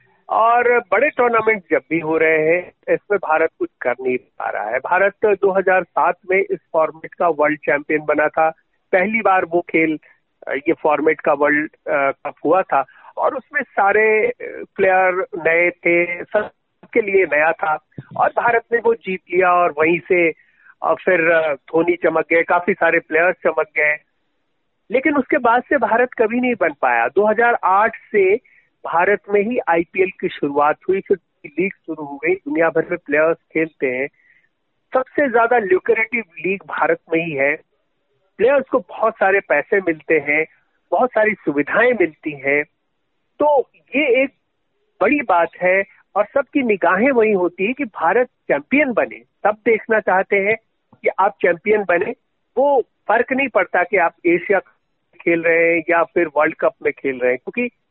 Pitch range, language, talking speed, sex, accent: 160-235 Hz, Hindi, 165 wpm, male, native